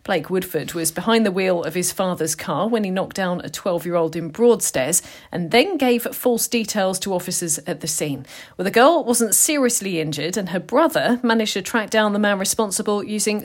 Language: English